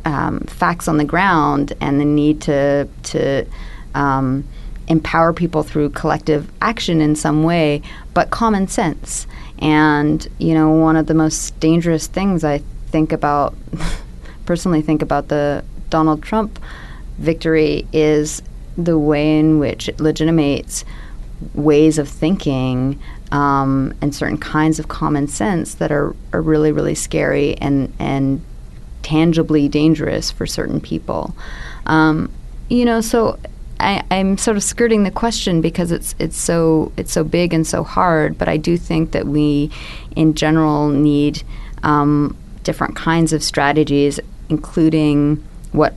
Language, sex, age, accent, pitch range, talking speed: English, female, 30-49, American, 145-160 Hz, 140 wpm